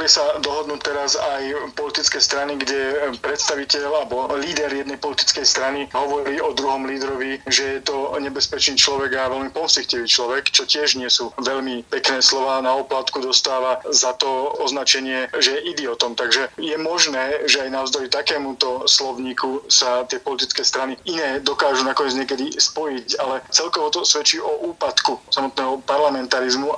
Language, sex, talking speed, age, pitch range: Slovak, male, 155 wpm, 30-49, 130-150 Hz